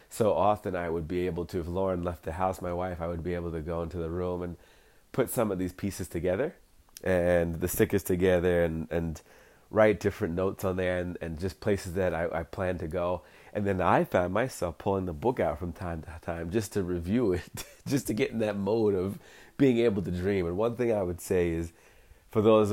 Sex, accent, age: male, American, 30-49